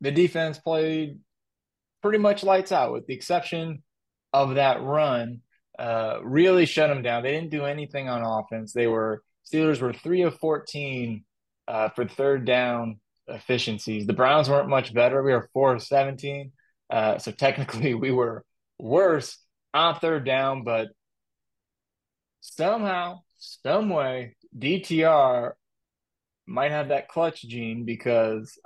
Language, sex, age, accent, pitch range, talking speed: English, male, 20-39, American, 120-150 Hz, 140 wpm